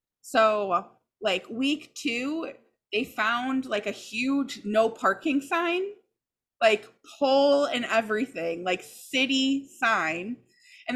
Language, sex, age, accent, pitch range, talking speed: English, female, 20-39, American, 215-310 Hz, 110 wpm